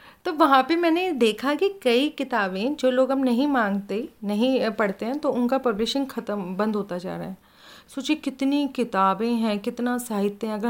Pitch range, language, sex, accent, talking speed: 205-255 Hz, Hindi, female, native, 180 wpm